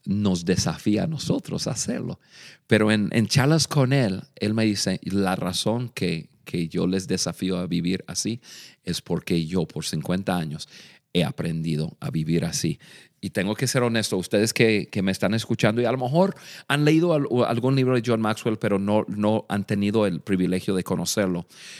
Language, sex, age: Spanish, male, 40-59